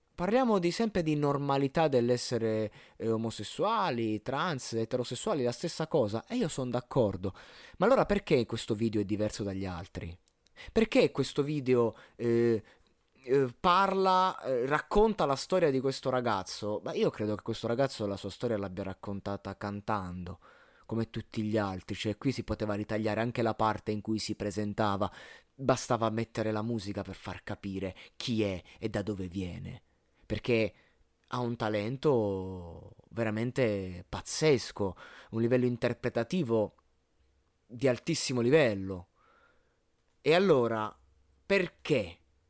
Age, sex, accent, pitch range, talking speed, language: 20-39, male, native, 105-130 Hz, 130 wpm, Italian